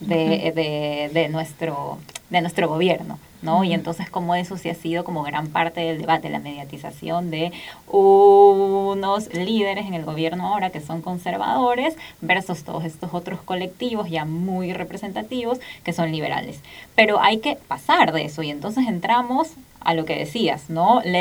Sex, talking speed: female, 165 wpm